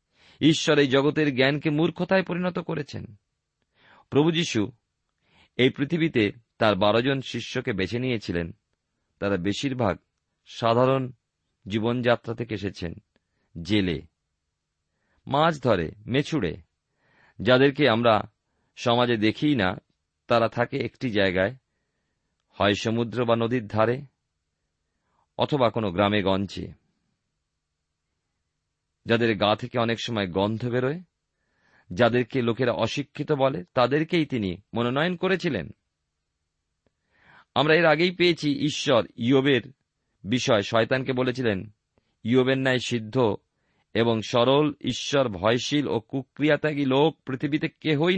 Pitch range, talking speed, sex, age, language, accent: 100-145 Hz, 100 wpm, male, 50-69, Bengali, native